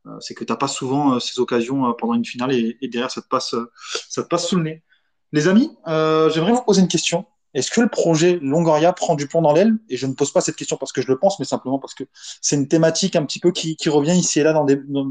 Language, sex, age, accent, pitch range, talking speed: French, male, 20-39, French, 140-175 Hz, 300 wpm